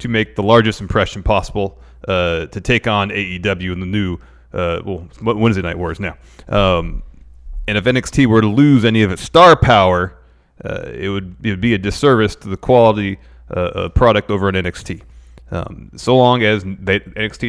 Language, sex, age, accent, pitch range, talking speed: English, male, 30-49, American, 85-115 Hz, 185 wpm